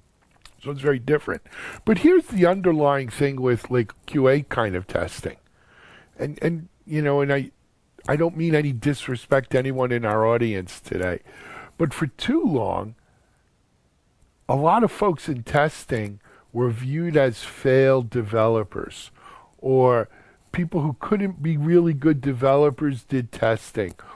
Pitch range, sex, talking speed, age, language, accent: 120-155 Hz, male, 140 wpm, 50-69, English, American